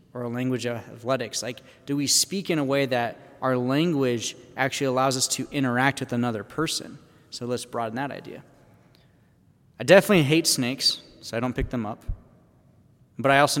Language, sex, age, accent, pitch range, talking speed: English, male, 20-39, American, 120-155 Hz, 180 wpm